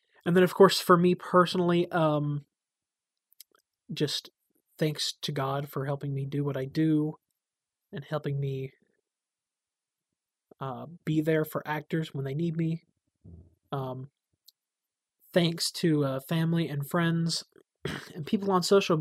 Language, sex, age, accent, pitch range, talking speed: English, male, 20-39, American, 145-185 Hz, 135 wpm